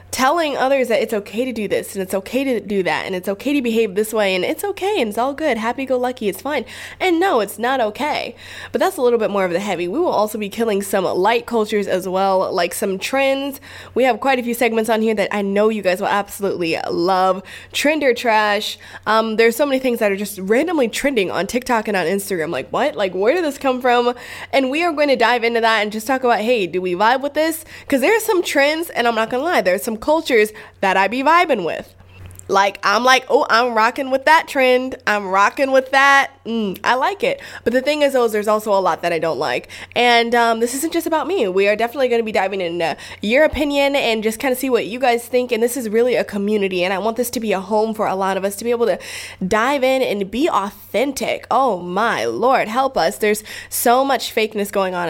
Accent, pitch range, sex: American, 195-265 Hz, female